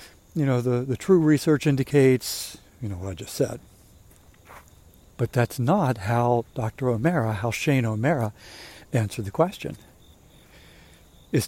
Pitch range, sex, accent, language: 110-150 Hz, male, American, English